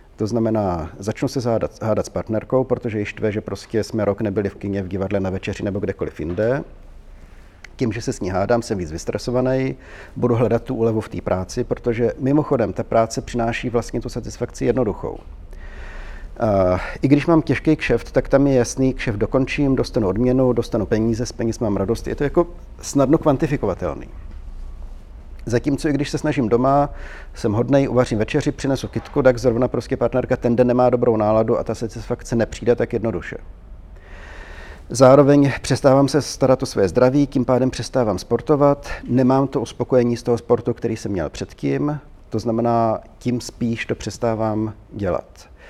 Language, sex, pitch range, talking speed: Czech, male, 100-125 Hz, 170 wpm